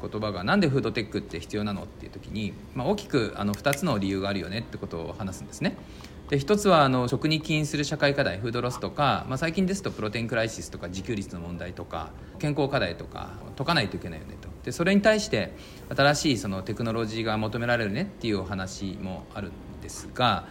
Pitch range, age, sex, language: 100-150 Hz, 40-59, male, Japanese